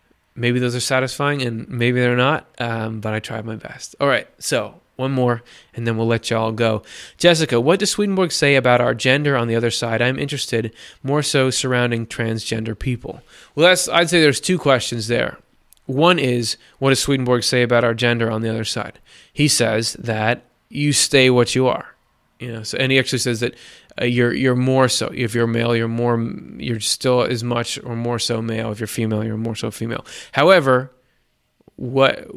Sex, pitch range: male, 115-135 Hz